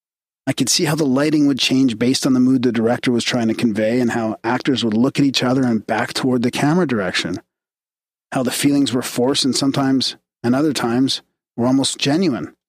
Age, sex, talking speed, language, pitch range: 40-59, male, 215 wpm, English, 115-140 Hz